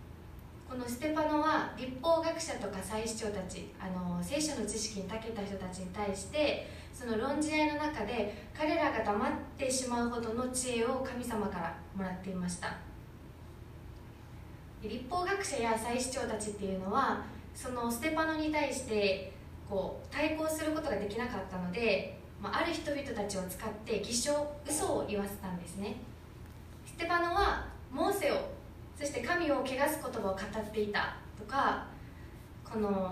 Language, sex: Japanese, female